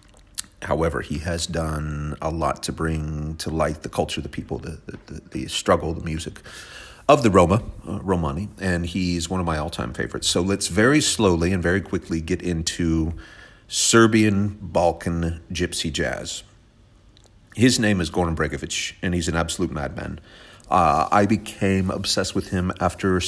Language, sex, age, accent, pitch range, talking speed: English, male, 40-59, American, 85-100 Hz, 160 wpm